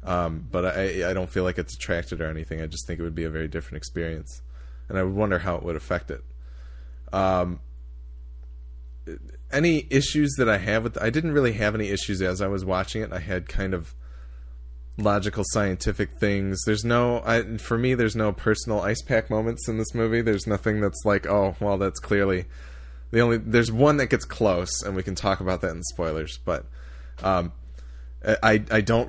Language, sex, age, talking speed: English, male, 20-39, 200 wpm